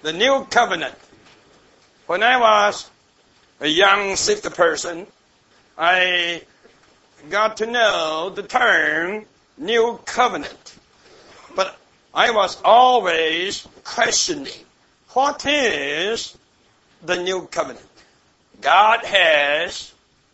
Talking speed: 90 wpm